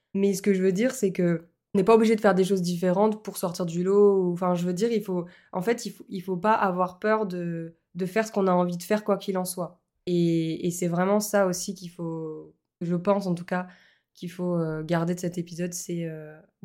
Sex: female